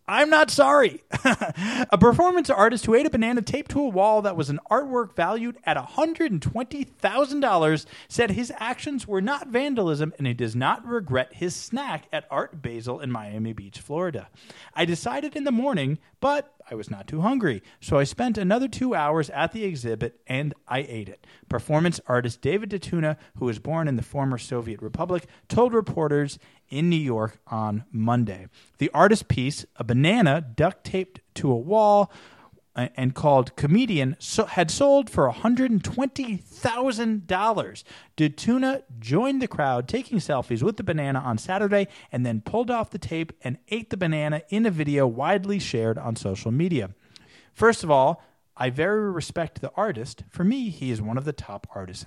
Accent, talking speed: American, 170 wpm